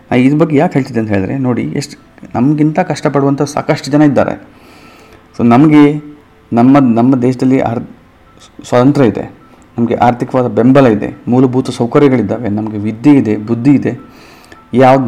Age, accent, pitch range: 30-49, native, 110-135 Hz